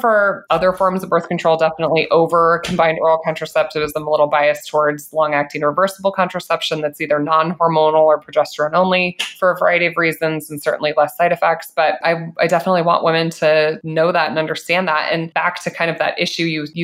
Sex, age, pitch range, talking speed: female, 20-39, 150-175 Hz, 190 wpm